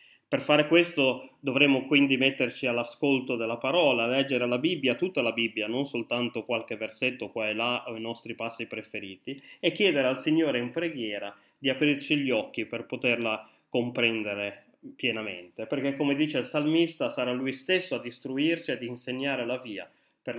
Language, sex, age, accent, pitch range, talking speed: Italian, male, 20-39, native, 115-145 Hz, 170 wpm